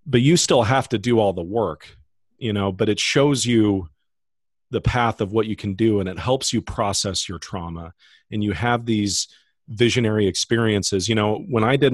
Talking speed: 200 wpm